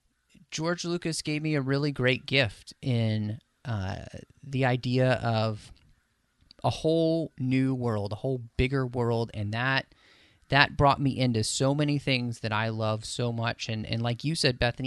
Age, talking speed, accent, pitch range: 30-49, 165 wpm, American, 110-145 Hz